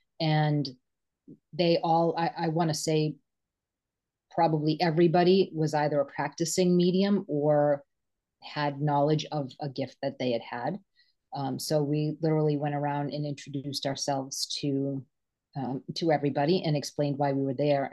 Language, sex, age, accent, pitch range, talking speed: English, female, 30-49, American, 145-175 Hz, 145 wpm